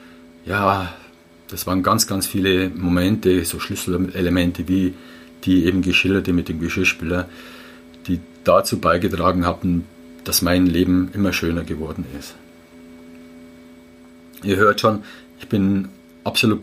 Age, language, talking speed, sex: 50-69, German, 120 wpm, male